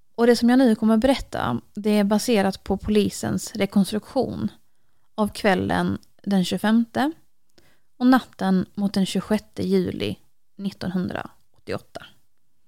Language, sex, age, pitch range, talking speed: English, female, 20-39, 190-225 Hz, 115 wpm